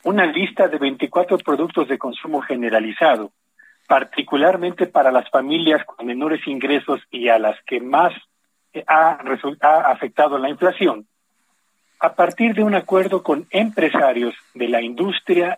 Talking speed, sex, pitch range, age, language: 130 wpm, male, 140-185 Hz, 40-59, Spanish